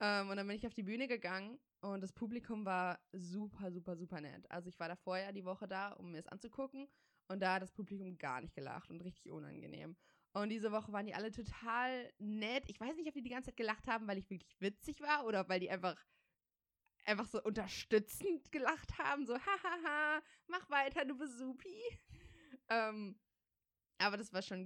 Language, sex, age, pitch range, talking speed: German, female, 20-39, 185-235 Hz, 205 wpm